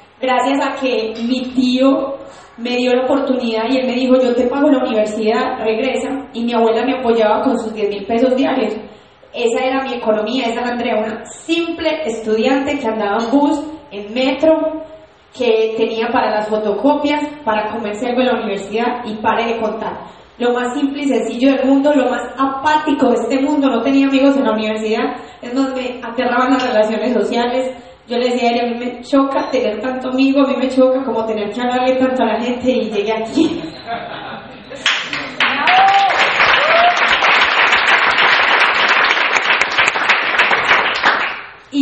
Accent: Colombian